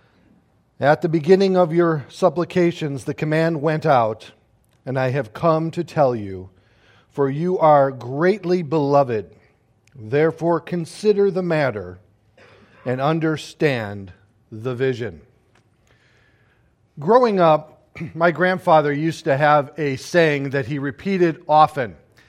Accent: American